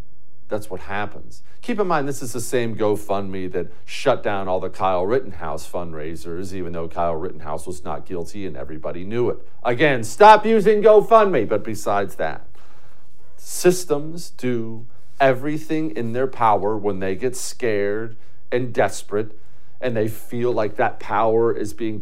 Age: 50-69